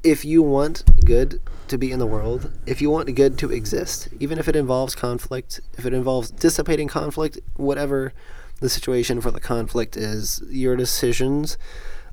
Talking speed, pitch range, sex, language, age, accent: 175 wpm, 110-130 Hz, male, English, 30-49, American